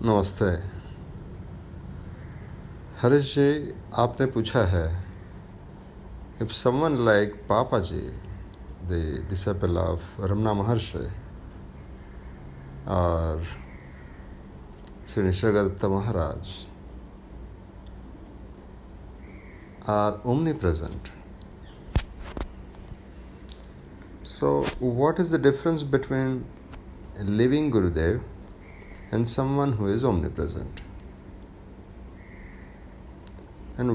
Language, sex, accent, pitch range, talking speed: Hindi, male, native, 85-110 Hz, 65 wpm